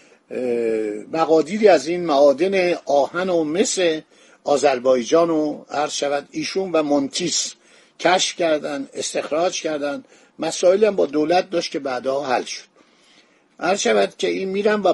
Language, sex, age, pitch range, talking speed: Persian, male, 50-69, 150-205 Hz, 130 wpm